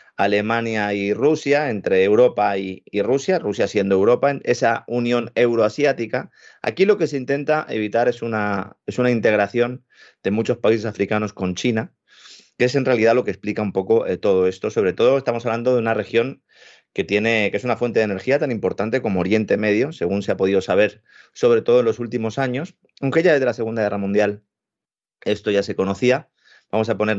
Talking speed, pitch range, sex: 195 wpm, 100-135 Hz, male